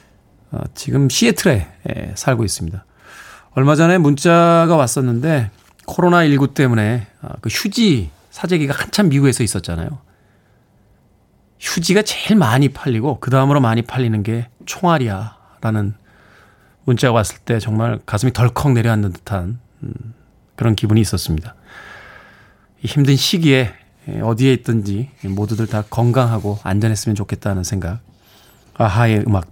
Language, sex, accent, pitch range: Korean, male, native, 105-155 Hz